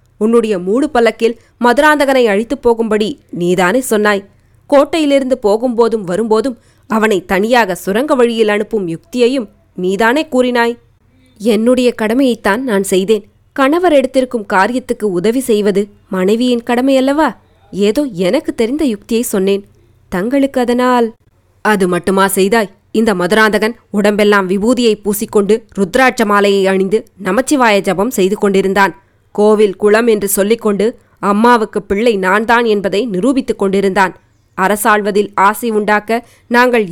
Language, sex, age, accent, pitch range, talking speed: Tamil, female, 20-39, native, 200-240 Hz, 105 wpm